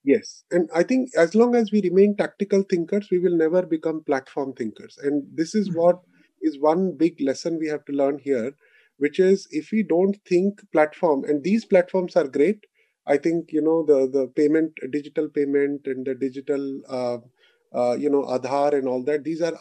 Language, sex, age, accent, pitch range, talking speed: English, male, 30-49, Indian, 145-185 Hz, 195 wpm